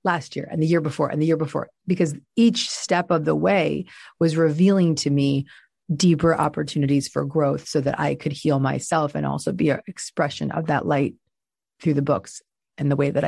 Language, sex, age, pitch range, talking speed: English, female, 30-49, 140-170 Hz, 205 wpm